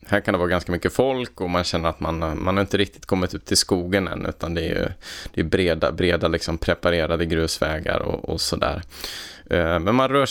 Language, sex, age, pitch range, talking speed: Swedish, male, 20-39, 85-105 Hz, 225 wpm